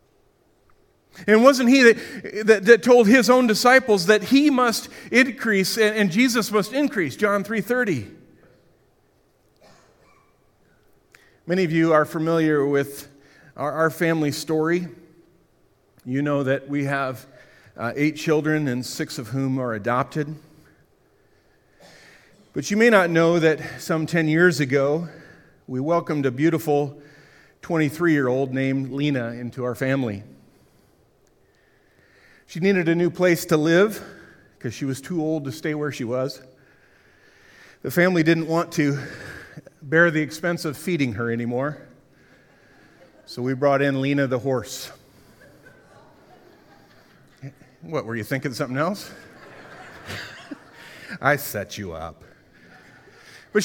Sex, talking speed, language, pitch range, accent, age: male, 125 wpm, English, 140-185 Hz, American, 40-59